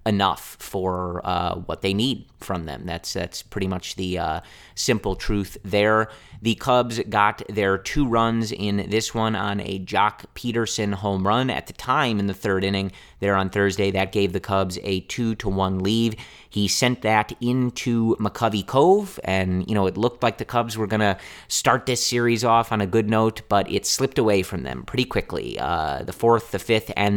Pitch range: 95-115 Hz